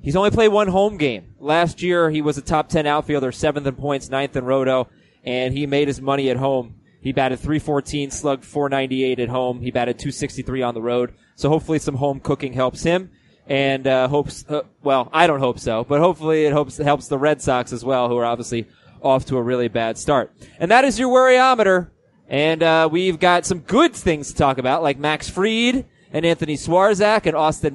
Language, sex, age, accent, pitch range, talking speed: English, male, 20-39, American, 130-165 Hz, 225 wpm